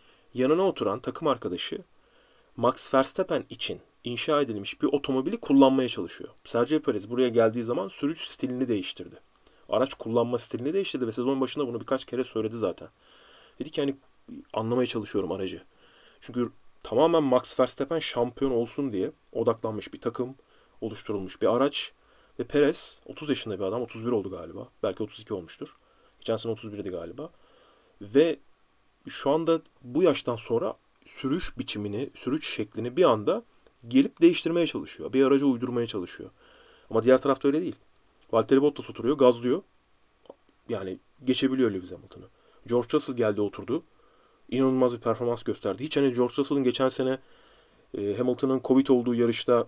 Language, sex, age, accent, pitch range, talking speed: Turkish, male, 40-59, native, 120-140 Hz, 145 wpm